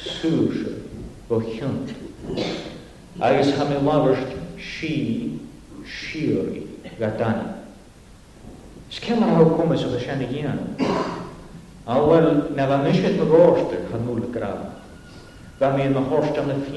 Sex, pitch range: male, 120-160 Hz